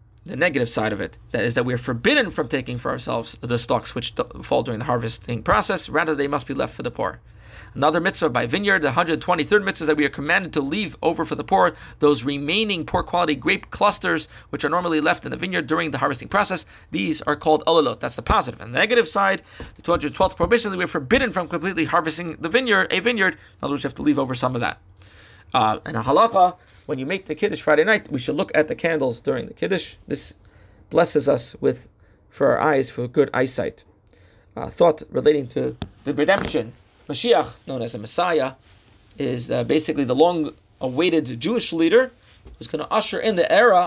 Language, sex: English, male